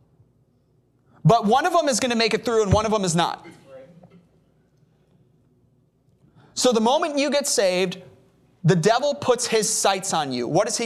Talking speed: 170 wpm